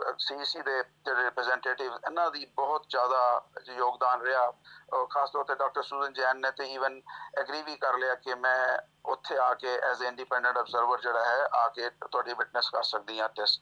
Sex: male